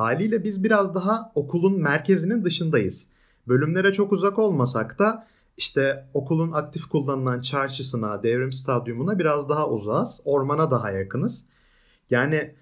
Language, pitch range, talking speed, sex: Turkish, 130-175 Hz, 125 wpm, male